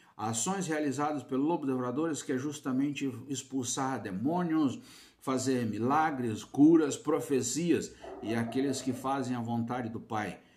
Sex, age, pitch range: male, 60-79, 105-145 Hz